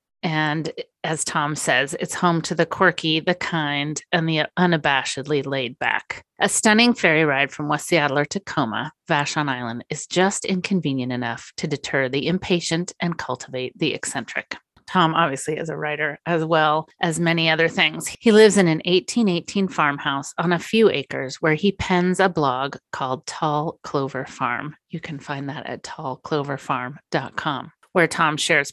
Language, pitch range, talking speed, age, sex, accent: English, 145-180 Hz, 165 wpm, 30-49, female, American